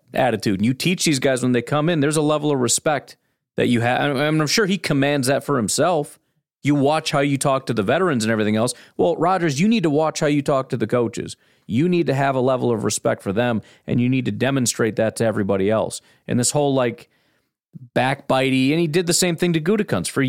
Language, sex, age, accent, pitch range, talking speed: English, male, 40-59, American, 115-150 Hz, 240 wpm